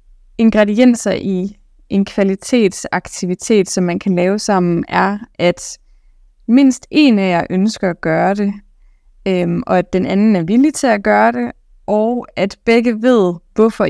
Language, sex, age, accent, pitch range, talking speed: Danish, female, 20-39, native, 195-235 Hz, 150 wpm